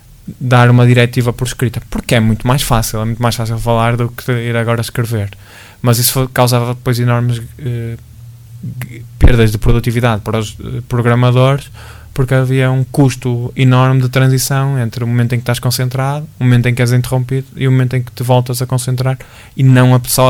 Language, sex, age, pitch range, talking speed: Portuguese, male, 20-39, 115-130 Hz, 190 wpm